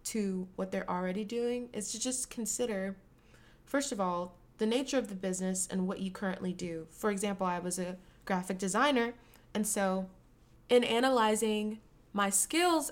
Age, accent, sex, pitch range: 20-39, American, female, 185-220 Hz